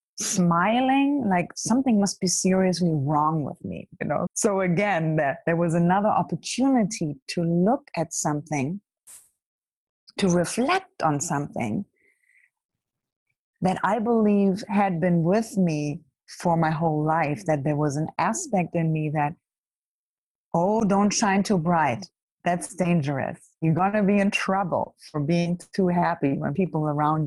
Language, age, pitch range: English, 30-49, 160-205 Hz